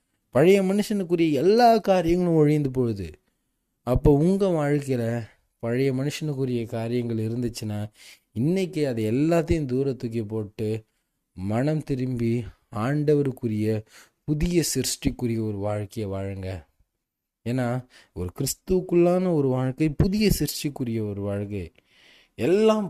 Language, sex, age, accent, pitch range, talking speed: Tamil, male, 20-39, native, 105-135 Hz, 95 wpm